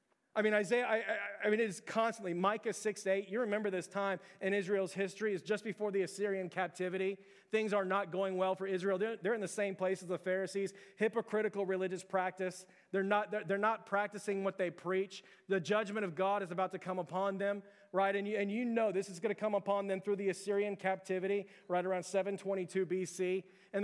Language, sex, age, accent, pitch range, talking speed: English, male, 30-49, American, 190-215 Hz, 215 wpm